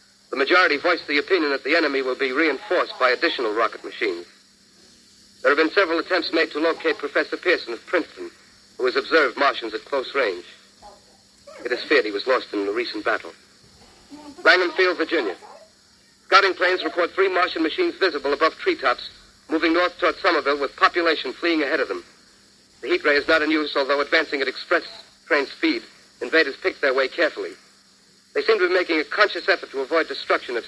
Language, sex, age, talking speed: English, male, 50-69, 190 wpm